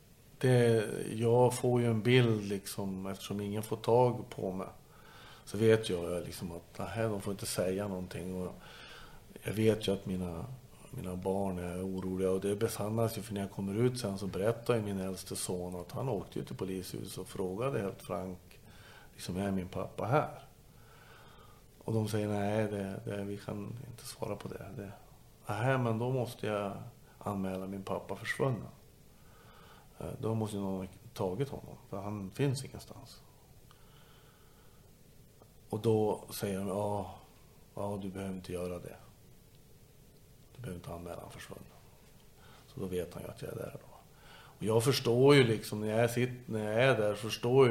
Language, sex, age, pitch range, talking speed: Swedish, male, 50-69, 95-120 Hz, 170 wpm